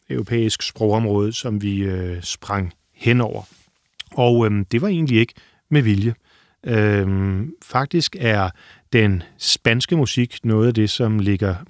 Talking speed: 140 wpm